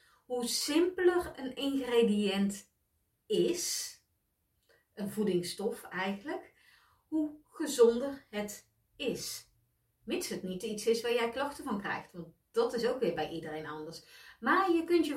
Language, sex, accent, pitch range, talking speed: Dutch, female, Dutch, 190-245 Hz, 135 wpm